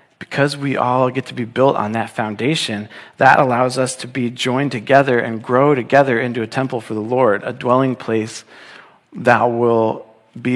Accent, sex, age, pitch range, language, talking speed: American, male, 40-59, 115-130 Hz, English, 180 wpm